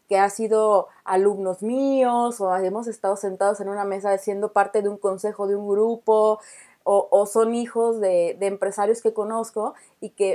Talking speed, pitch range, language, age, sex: 180 wpm, 200-235 Hz, Spanish, 30-49, female